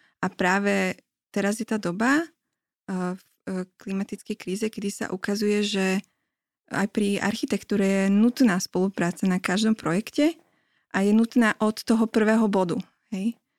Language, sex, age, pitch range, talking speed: Slovak, female, 20-39, 190-215 Hz, 140 wpm